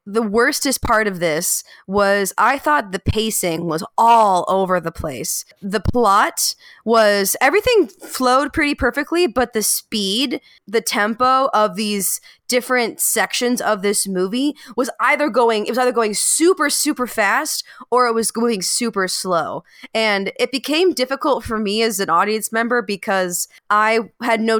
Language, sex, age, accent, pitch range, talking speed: English, female, 20-39, American, 190-250 Hz, 155 wpm